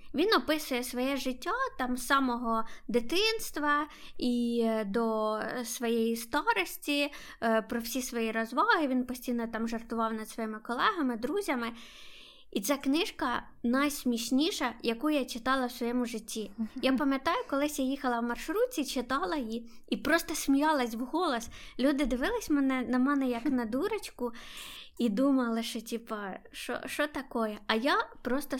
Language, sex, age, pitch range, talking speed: Ukrainian, female, 20-39, 230-275 Hz, 135 wpm